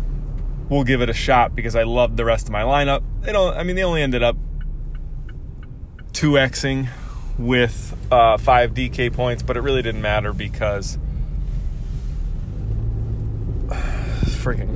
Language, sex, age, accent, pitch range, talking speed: English, male, 20-39, American, 105-125 Hz, 140 wpm